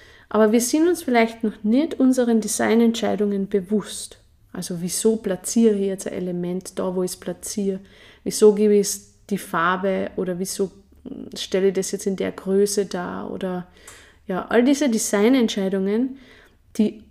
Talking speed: 155 wpm